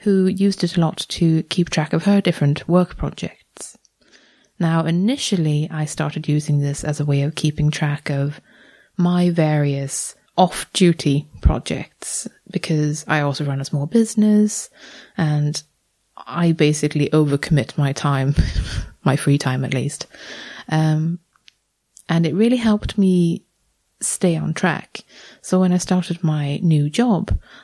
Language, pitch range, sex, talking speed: English, 150-185 Hz, female, 140 wpm